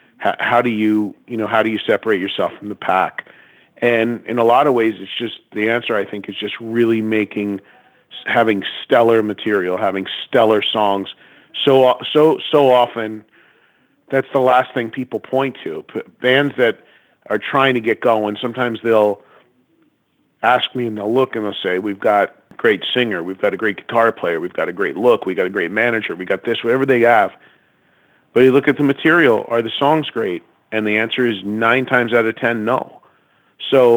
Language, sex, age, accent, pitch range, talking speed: English, male, 40-59, American, 110-125 Hz, 195 wpm